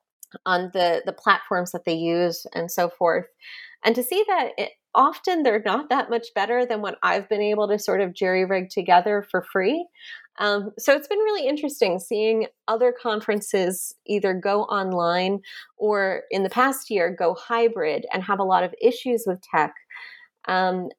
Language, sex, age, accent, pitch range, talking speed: English, female, 30-49, American, 180-240 Hz, 175 wpm